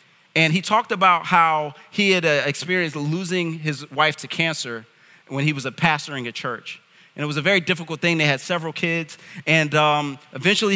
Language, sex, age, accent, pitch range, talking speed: English, male, 30-49, American, 155-200 Hz, 195 wpm